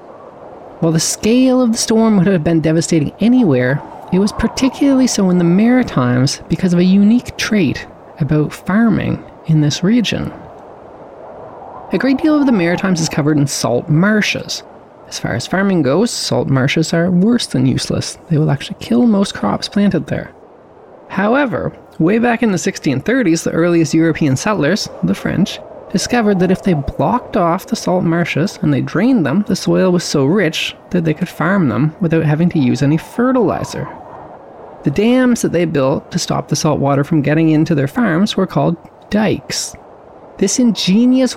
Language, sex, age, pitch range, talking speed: English, male, 20-39, 155-225 Hz, 175 wpm